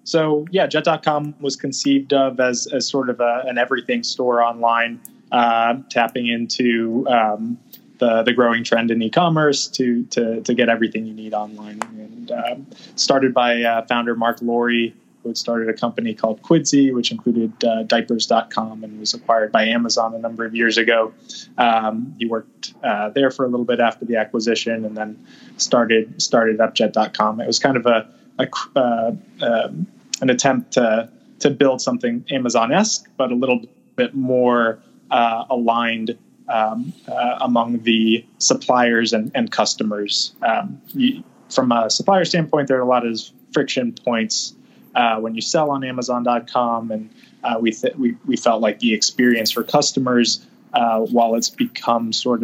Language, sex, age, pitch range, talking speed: English, male, 20-39, 115-140 Hz, 165 wpm